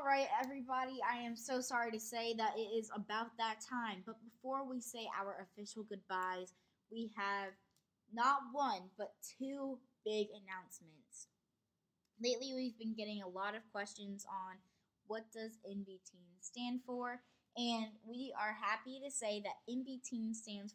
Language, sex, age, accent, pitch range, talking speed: English, female, 10-29, American, 200-245 Hz, 155 wpm